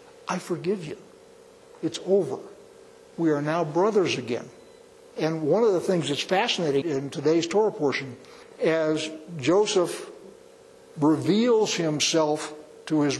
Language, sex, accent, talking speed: English, male, American, 125 wpm